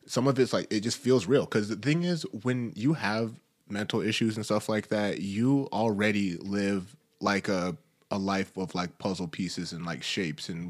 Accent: American